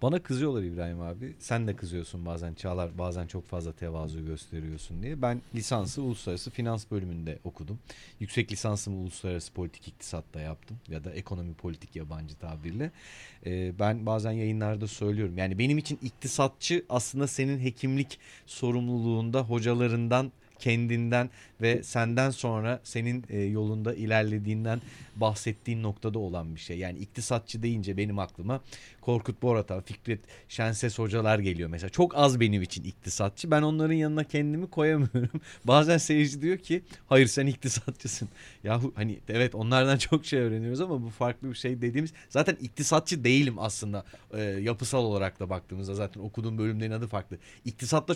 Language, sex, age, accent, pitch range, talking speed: Turkish, male, 40-59, native, 100-130 Hz, 145 wpm